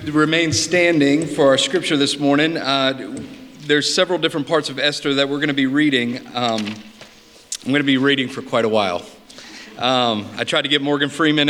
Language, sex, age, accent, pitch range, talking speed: English, male, 40-59, American, 125-160 Hz, 195 wpm